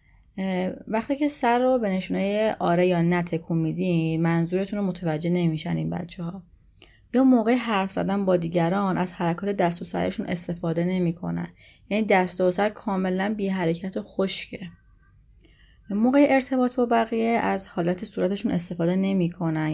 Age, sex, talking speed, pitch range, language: 30-49, female, 140 wpm, 165-195 Hz, Persian